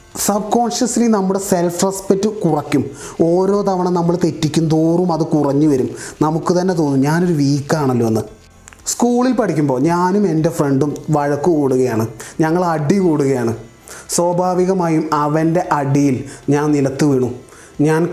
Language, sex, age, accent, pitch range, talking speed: Malayalam, male, 30-49, native, 140-175 Hz, 120 wpm